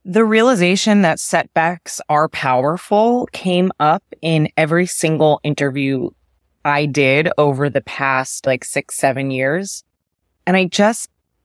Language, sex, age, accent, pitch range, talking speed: English, female, 20-39, American, 145-195 Hz, 125 wpm